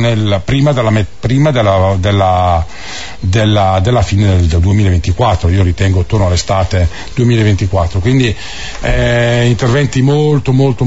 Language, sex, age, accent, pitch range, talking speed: Italian, male, 50-69, native, 95-120 Hz, 115 wpm